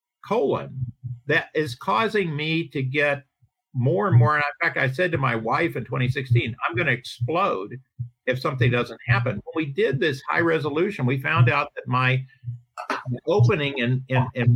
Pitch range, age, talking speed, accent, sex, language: 125-170 Hz, 50-69, 170 wpm, American, male, English